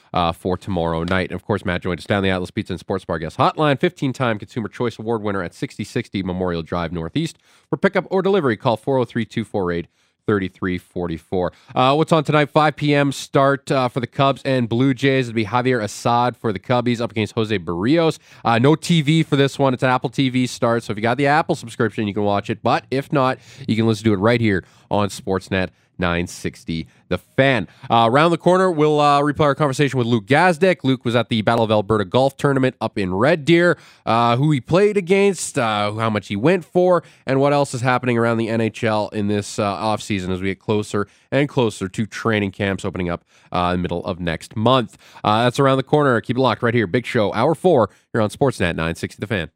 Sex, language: male, English